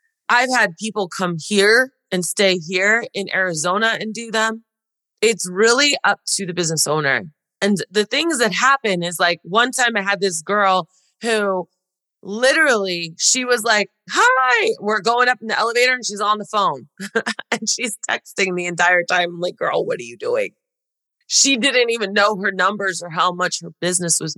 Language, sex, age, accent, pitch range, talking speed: English, female, 30-49, American, 165-220 Hz, 185 wpm